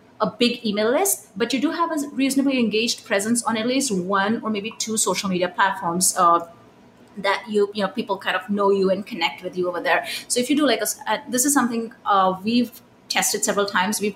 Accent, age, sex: Indian, 30-49, female